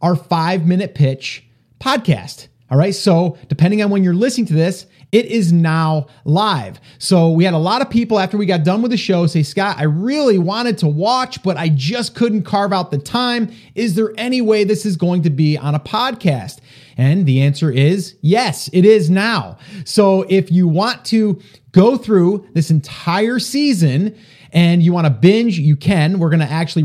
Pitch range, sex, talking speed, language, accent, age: 145-200 Hz, male, 200 wpm, English, American, 30-49